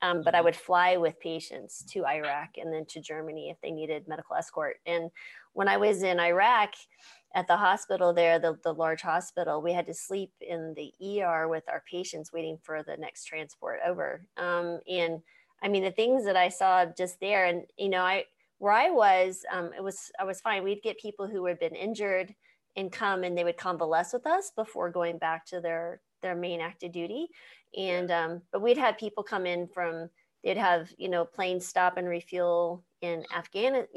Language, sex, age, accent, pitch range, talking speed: English, female, 30-49, American, 170-220 Hz, 205 wpm